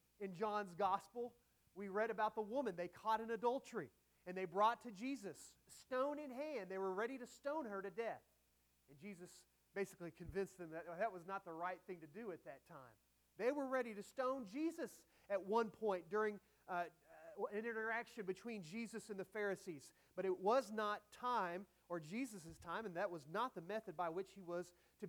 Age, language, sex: 30-49, English, male